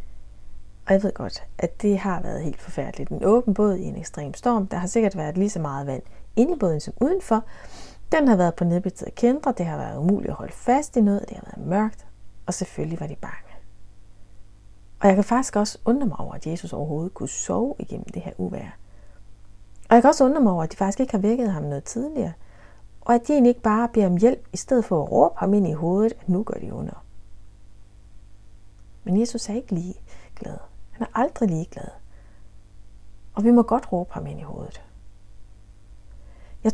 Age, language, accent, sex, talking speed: 30-49, Danish, native, female, 210 wpm